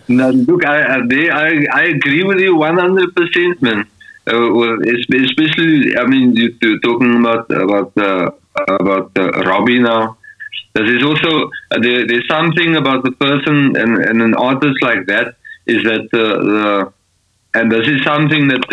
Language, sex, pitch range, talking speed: English, male, 105-145 Hz, 155 wpm